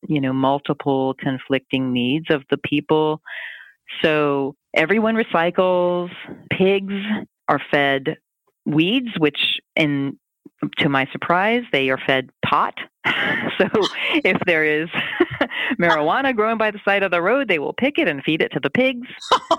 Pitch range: 140-195 Hz